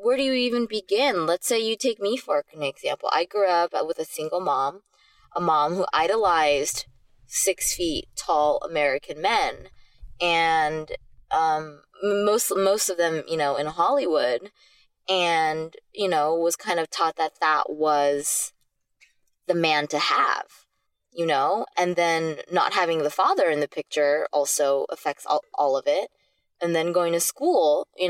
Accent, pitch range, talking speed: American, 150-225 Hz, 160 wpm